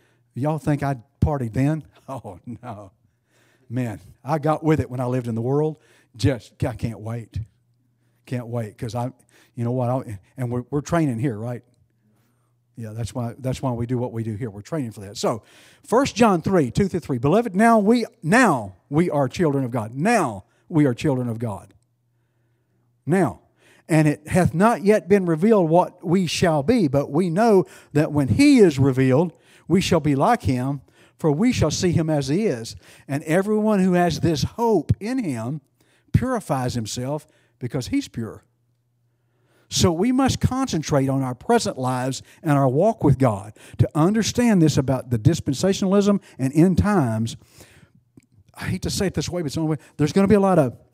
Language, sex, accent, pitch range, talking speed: English, male, American, 120-175 Hz, 185 wpm